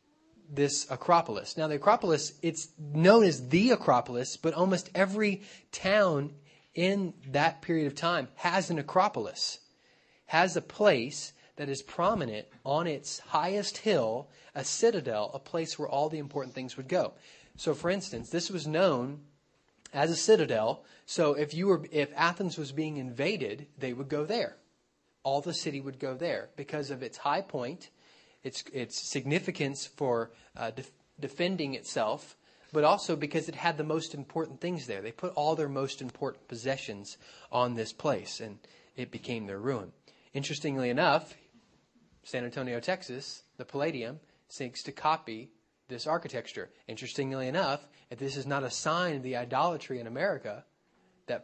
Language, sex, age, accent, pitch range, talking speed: English, male, 30-49, American, 130-170 Hz, 155 wpm